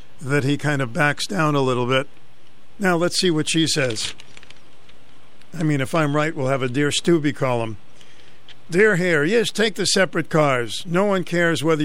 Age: 50-69